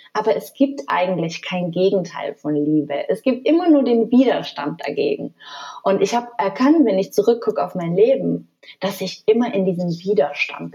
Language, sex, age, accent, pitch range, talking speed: German, female, 30-49, German, 170-235 Hz, 175 wpm